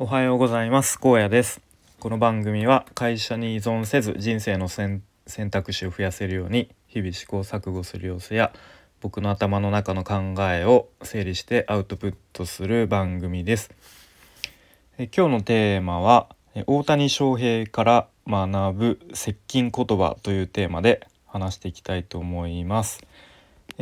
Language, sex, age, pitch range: Japanese, male, 20-39, 95-120 Hz